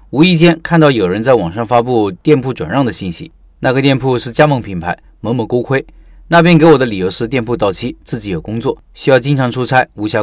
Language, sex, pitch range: Chinese, male, 110-155 Hz